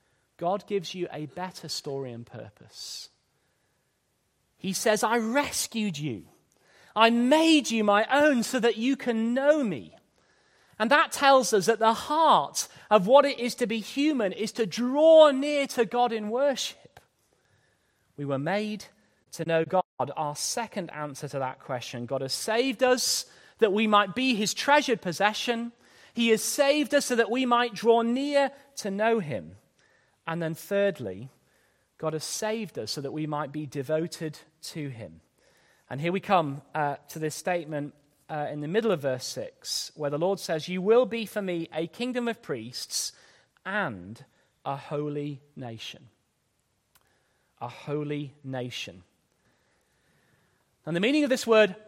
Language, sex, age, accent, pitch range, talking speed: English, male, 30-49, British, 150-245 Hz, 160 wpm